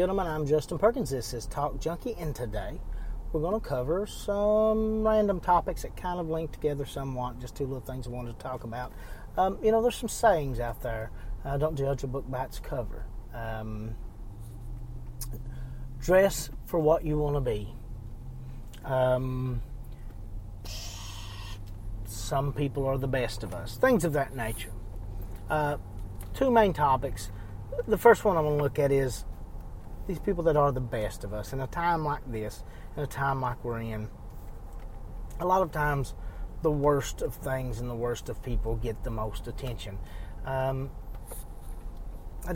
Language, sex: English, male